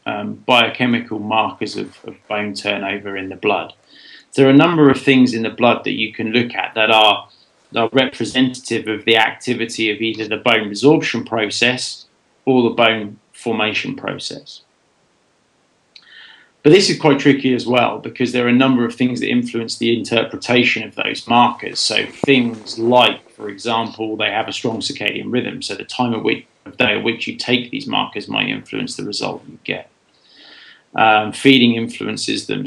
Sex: male